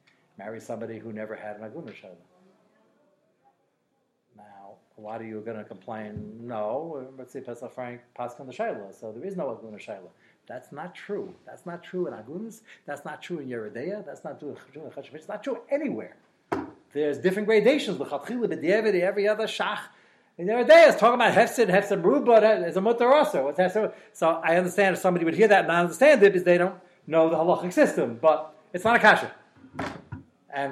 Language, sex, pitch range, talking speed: English, male, 165-235 Hz, 185 wpm